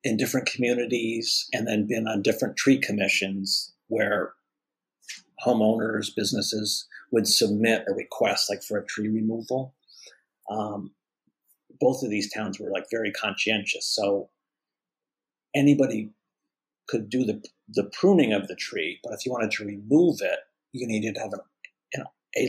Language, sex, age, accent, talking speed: English, male, 50-69, American, 145 wpm